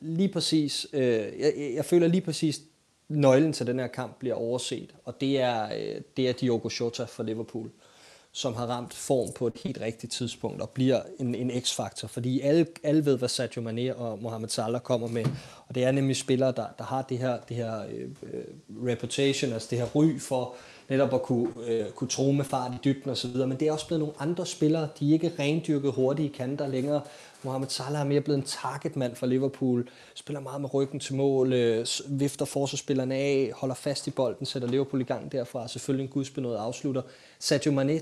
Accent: native